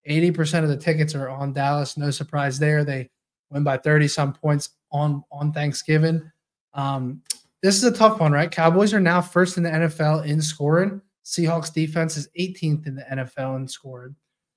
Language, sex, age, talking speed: English, male, 20-39, 175 wpm